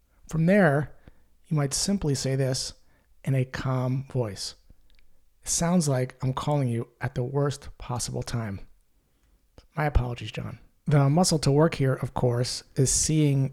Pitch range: 125-150 Hz